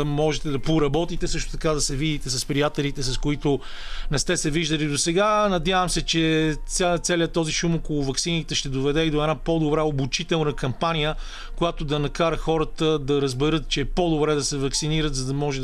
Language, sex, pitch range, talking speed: Bulgarian, male, 140-170 Hz, 195 wpm